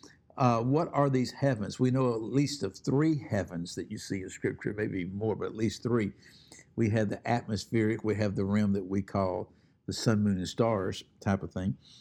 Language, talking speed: English, 210 wpm